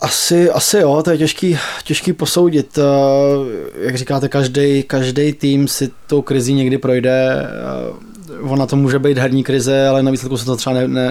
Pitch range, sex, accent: 125-135 Hz, male, native